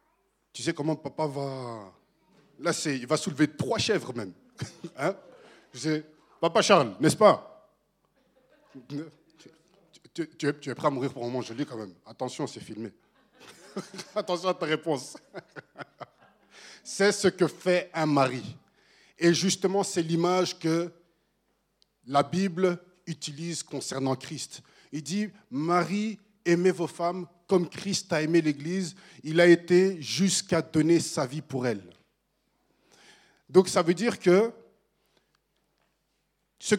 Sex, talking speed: male, 135 wpm